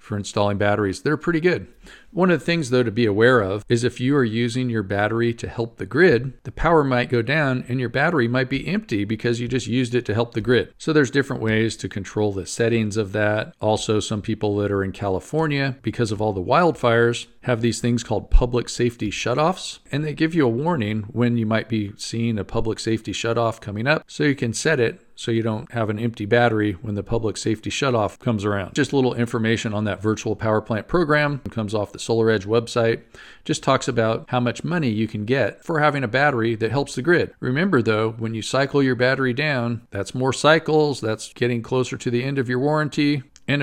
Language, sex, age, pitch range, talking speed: English, male, 40-59, 110-135 Hz, 225 wpm